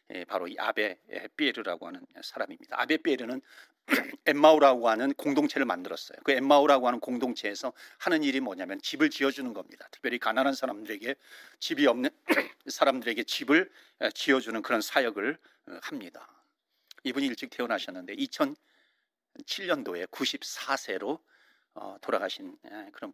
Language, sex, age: Korean, male, 40-59